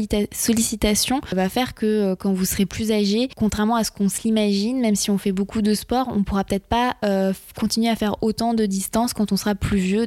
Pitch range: 195-230 Hz